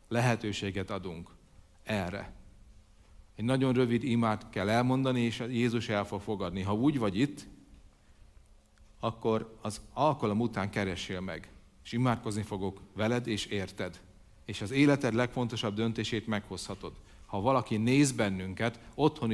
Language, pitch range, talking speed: Hungarian, 105-135 Hz, 125 wpm